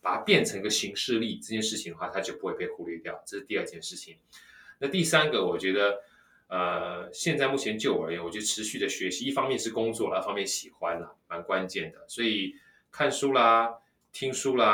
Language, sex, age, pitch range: Chinese, male, 20-39, 100-140 Hz